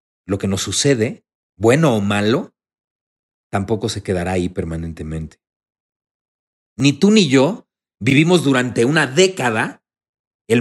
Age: 40-59